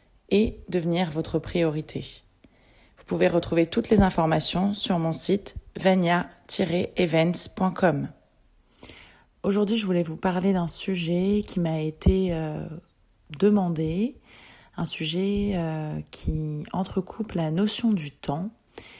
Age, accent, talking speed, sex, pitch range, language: 30-49, French, 110 wpm, female, 160-200 Hz, French